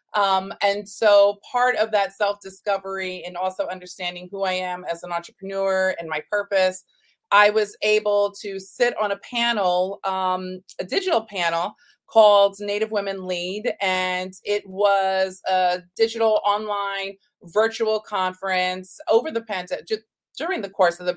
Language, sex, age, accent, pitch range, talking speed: English, female, 30-49, American, 185-220 Hz, 145 wpm